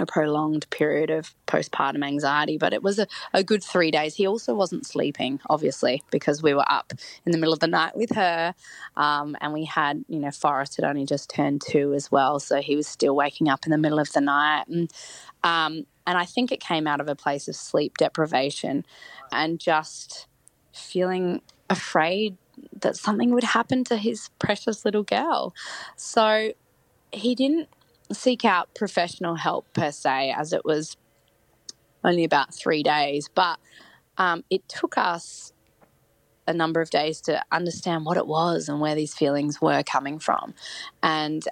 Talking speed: 175 wpm